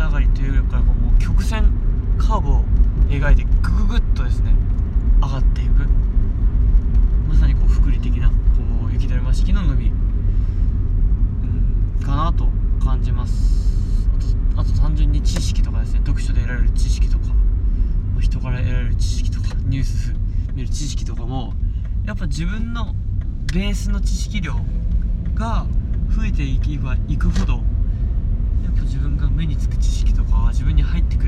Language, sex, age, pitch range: Japanese, male, 20-39, 90-100 Hz